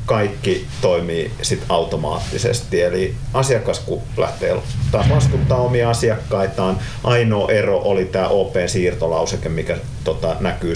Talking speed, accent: 95 wpm, native